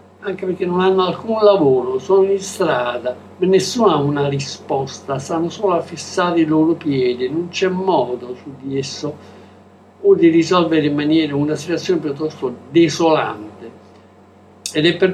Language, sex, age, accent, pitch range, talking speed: Italian, male, 60-79, native, 135-185 Hz, 150 wpm